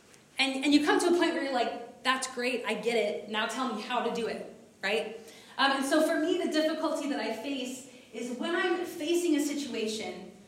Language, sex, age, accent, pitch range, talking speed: English, female, 20-39, American, 220-295 Hz, 225 wpm